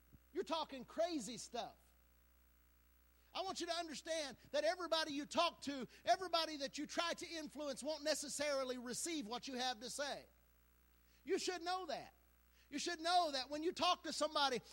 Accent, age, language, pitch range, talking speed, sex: American, 50-69, English, 235-325 Hz, 165 wpm, male